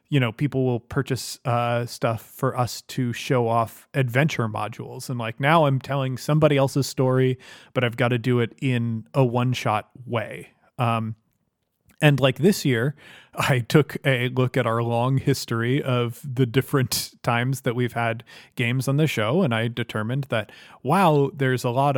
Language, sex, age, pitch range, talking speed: English, male, 30-49, 120-145 Hz, 175 wpm